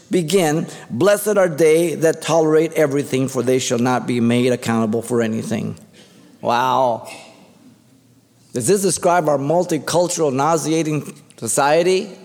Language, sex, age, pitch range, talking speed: English, male, 50-69, 115-155 Hz, 120 wpm